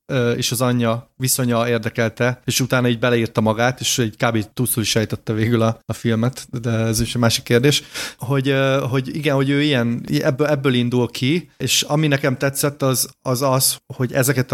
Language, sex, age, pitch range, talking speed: Hungarian, male, 30-49, 115-135 Hz, 180 wpm